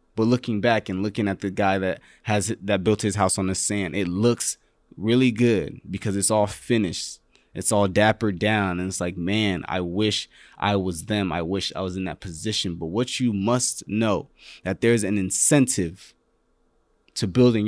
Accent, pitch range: American, 95-125 Hz